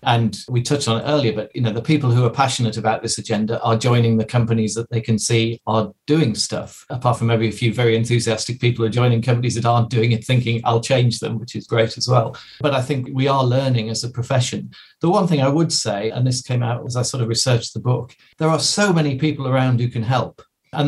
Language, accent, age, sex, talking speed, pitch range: English, British, 40-59, male, 255 wpm, 115-140 Hz